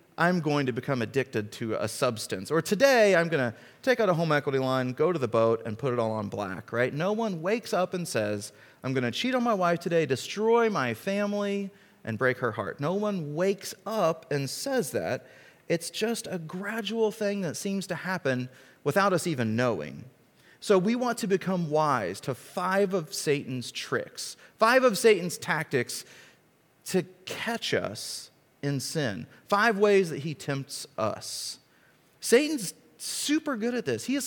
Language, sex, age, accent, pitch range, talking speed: English, male, 30-49, American, 135-205 Hz, 180 wpm